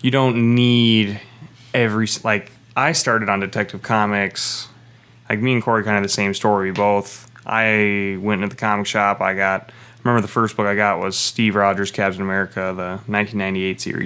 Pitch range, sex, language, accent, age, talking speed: 100-120 Hz, male, English, American, 20-39, 180 wpm